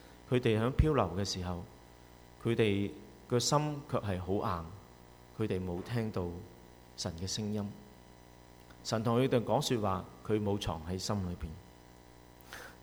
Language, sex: Chinese, male